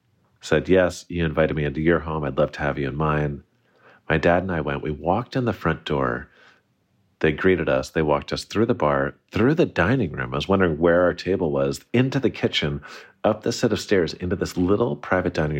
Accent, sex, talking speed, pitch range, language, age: American, male, 225 wpm, 70-90 Hz, English, 40-59